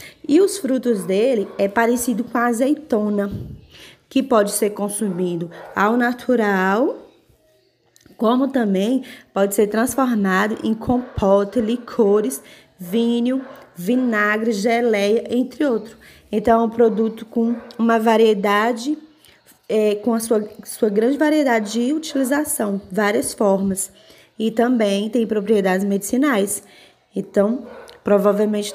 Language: Portuguese